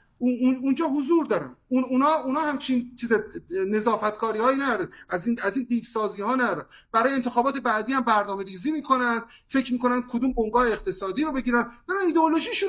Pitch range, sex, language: 195-270 Hz, male, Persian